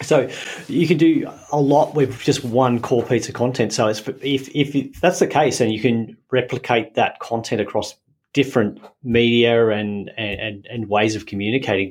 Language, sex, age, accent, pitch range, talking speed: English, male, 30-49, Australian, 110-135 Hz, 180 wpm